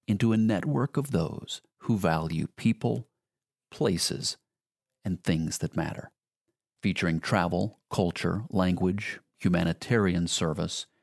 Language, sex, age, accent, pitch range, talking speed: English, male, 40-59, American, 85-110 Hz, 105 wpm